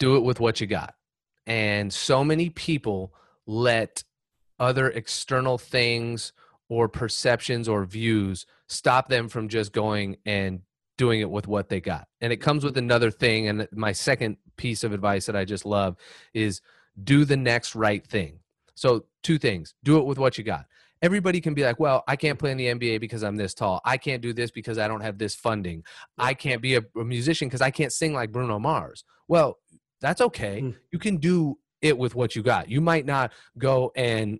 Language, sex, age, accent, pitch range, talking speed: English, male, 30-49, American, 110-145 Hz, 200 wpm